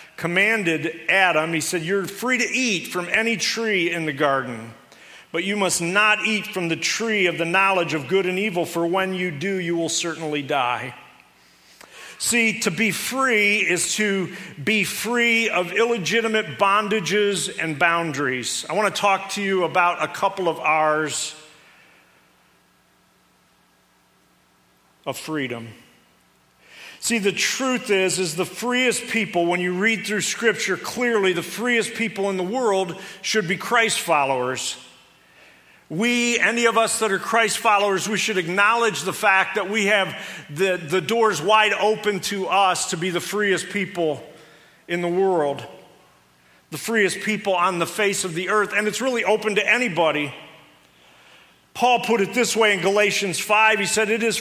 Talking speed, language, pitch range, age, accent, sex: 160 wpm, English, 165-215 Hz, 50-69, American, male